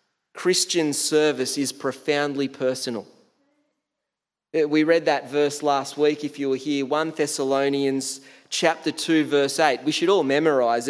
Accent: Australian